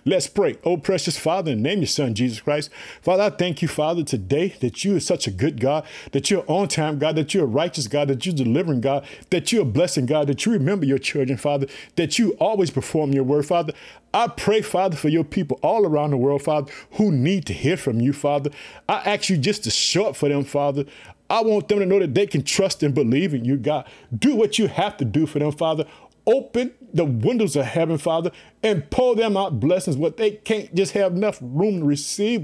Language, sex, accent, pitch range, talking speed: English, male, American, 145-200 Hz, 235 wpm